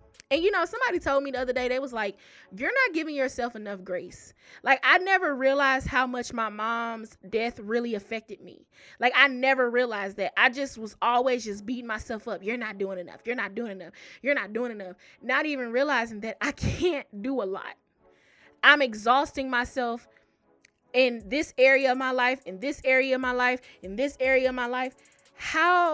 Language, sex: English, female